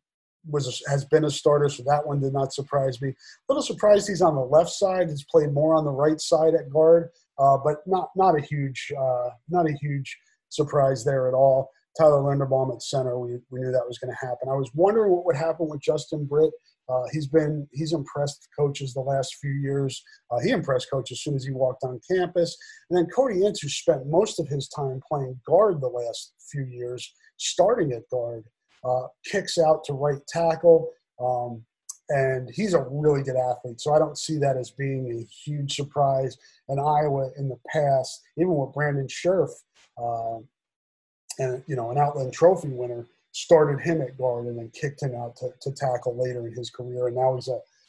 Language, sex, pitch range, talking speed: English, male, 125-160 Hz, 205 wpm